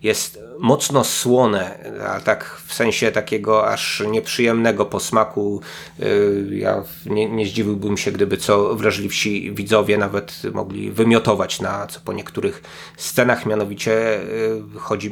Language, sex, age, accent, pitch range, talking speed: Polish, male, 30-49, native, 105-115 Hz, 120 wpm